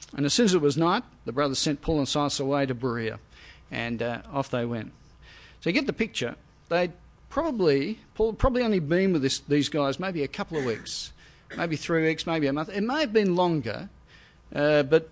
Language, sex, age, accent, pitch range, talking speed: English, male, 50-69, Australian, 135-170 Hz, 210 wpm